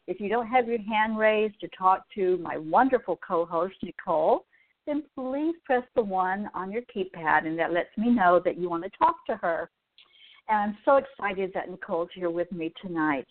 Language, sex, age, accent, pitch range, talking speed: English, female, 60-79, American, 170-235 Hz, 200 wpm